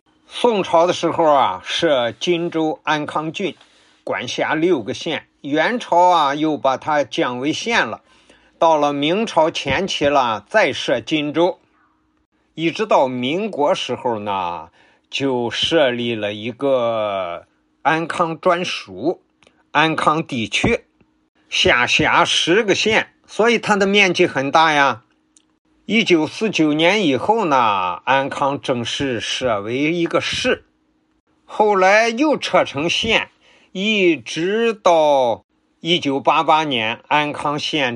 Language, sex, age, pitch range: Chinese, male, 50-69, 135-185 Hz